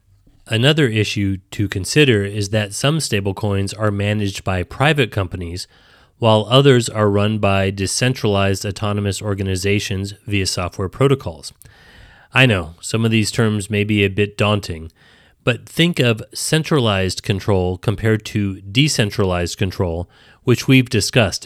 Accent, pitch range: American, 100-120 Hz